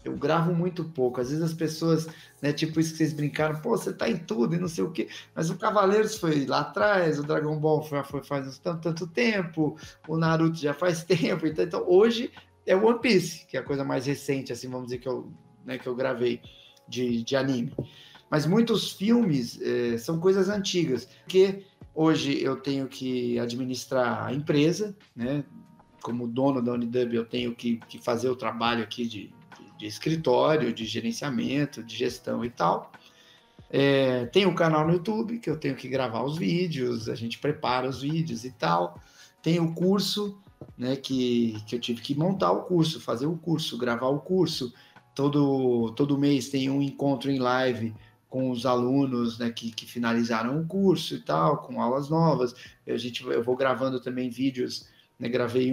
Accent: Brazilian